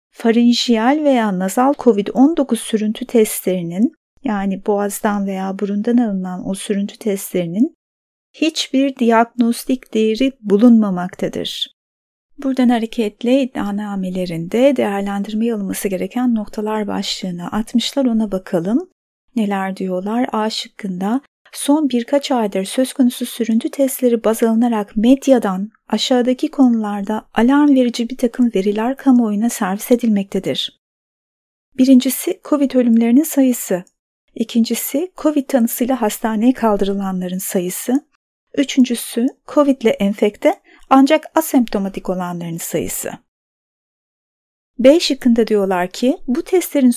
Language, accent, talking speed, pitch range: Turkish, native, 100 wpm, 205-260 Hz